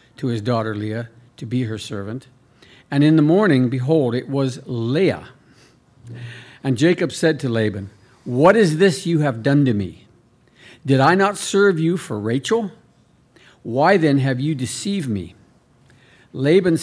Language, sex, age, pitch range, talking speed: English, male, 50-69, 120-150 Hz, 155 wpm